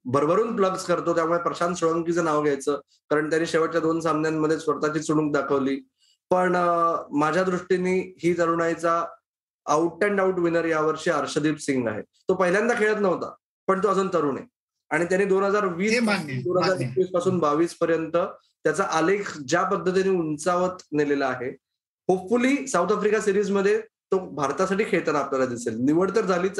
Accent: native